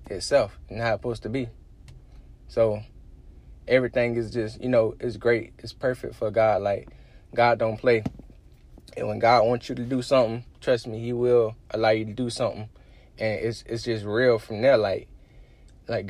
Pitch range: 110-130 Hz